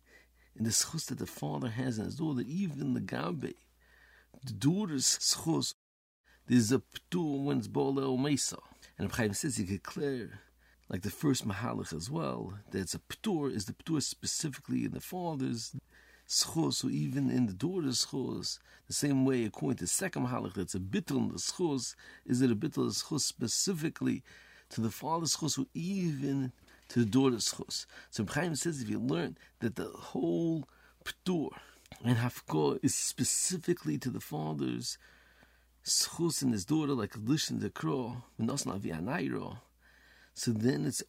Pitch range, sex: 110-145 Hz, male